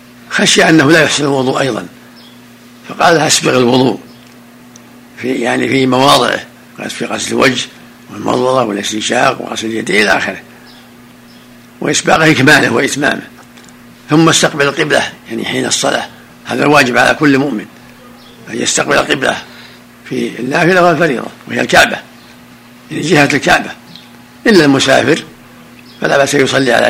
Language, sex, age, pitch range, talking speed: Arabic, male, 60-79, 120-155 Hz, 120 wpm